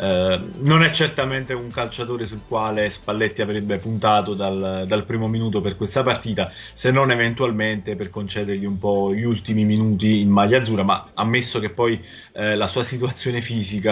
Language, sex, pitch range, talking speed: Italian, male, 105-125 Hz, 175 wpm